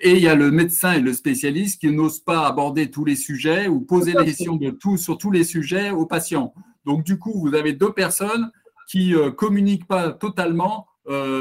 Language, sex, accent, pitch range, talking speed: French, male, French, 150-195 Hz, 215 wpm